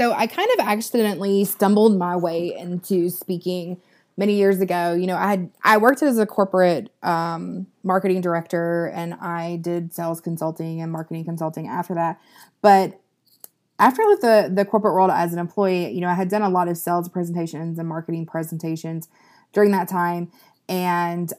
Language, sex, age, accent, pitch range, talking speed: English, female, 20-39, American, 165-190 Hz, 175 wpm